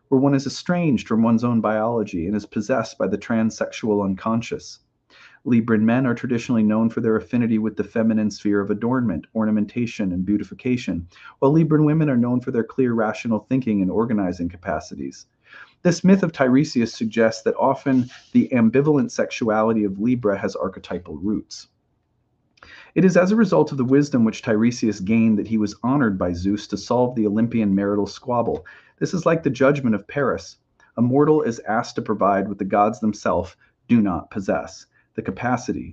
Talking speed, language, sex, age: 175 wpm, English, male, 40-59